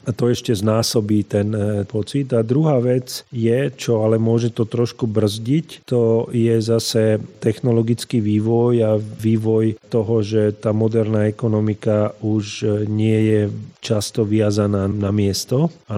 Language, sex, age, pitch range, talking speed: Slovak, male, 40-59, 105-120 Hz, 135 wpm